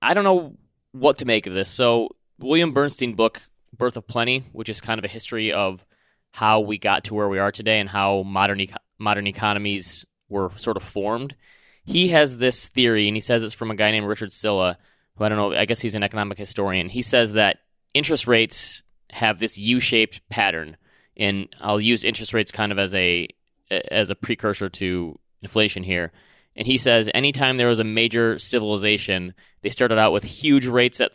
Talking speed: 200 wpm